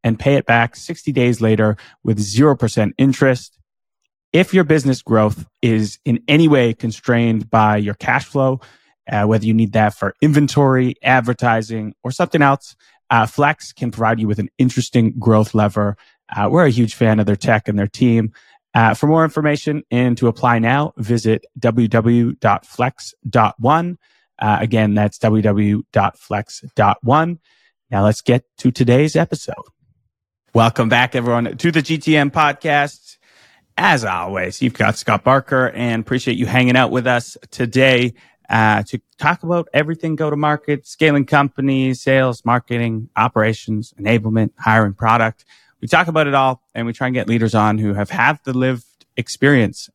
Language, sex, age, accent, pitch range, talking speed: English, male, 20-39, American, 110-135 Hz, 155 wpm